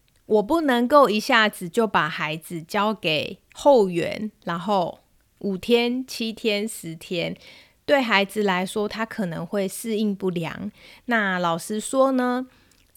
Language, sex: Chinese, female